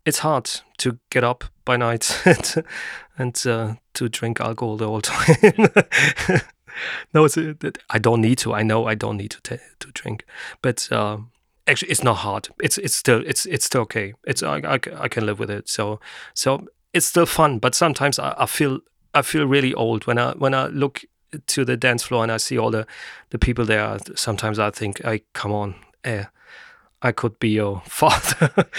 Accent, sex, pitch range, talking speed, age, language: German, male, 115-150 Hz, 200 wpm, 30-49, English